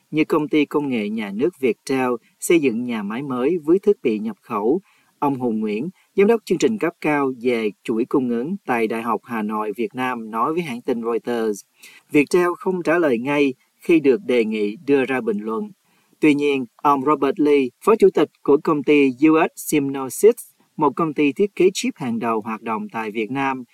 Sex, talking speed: male, 205 wpm